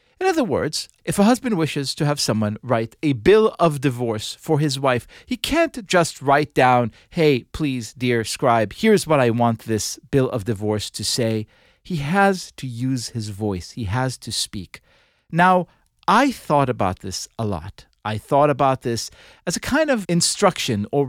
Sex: male